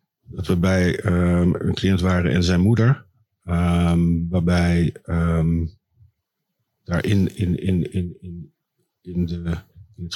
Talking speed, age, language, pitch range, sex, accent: 85 wpm, 50-69, Dutch, 90-105 Hz, male, Dutch